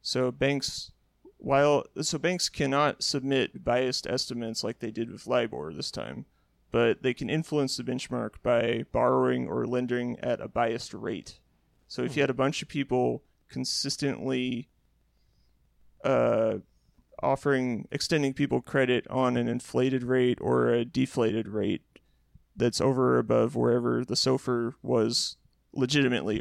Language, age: English, 30-49